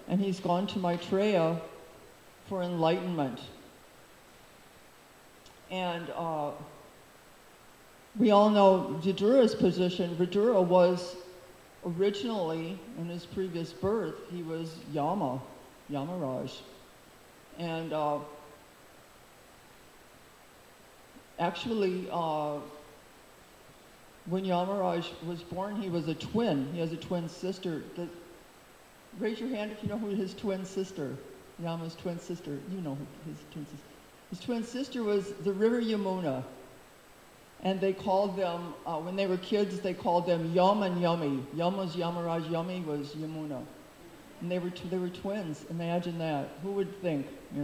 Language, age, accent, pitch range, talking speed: English, 50-69, American, 160-190 Hz, 125 wpm